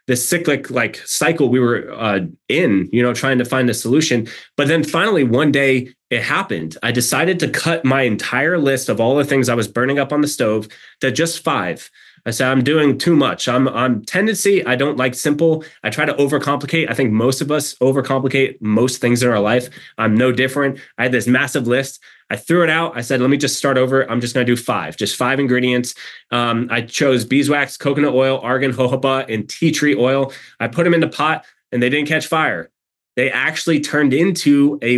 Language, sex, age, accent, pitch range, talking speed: English, male, 20-39, American, 120-145 Hz, 220 wpm